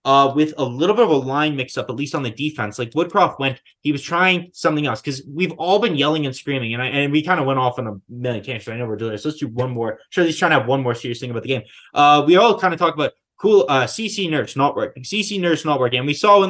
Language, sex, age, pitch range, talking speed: English, male, 20-39, 120-150 Hz, 300 wpm